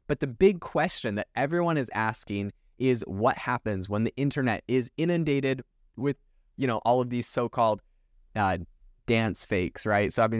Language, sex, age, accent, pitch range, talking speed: English, male, 20-39, American, 100-125 Hz, 165 wpm